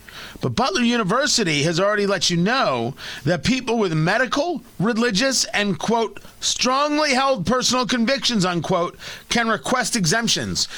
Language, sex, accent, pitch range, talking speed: English, male, American, 165-230 Hz, 130 wpm